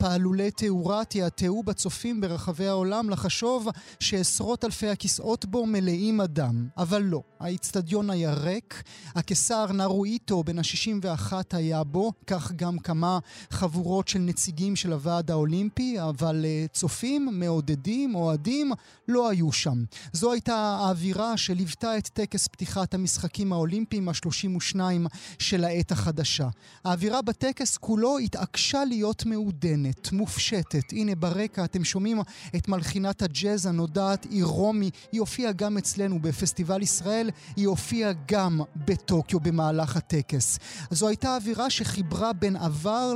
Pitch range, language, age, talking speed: 170-215 Hz, Hebrew, 30-49, 125 wpm